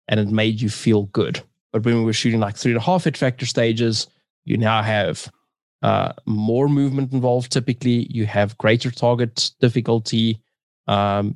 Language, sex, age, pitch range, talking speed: English, male, 20-39, 110-130 Hz, 175 wpm